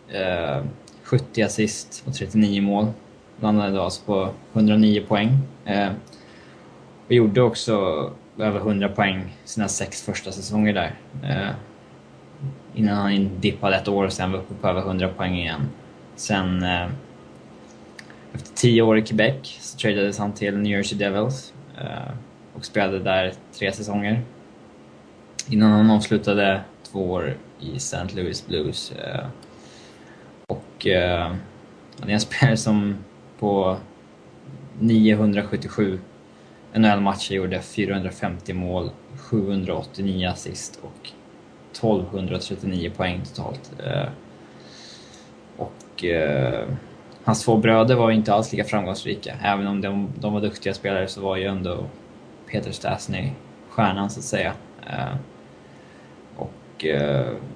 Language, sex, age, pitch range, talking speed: Swedish, male, 20-39, 95-105 Hz, 115 wpm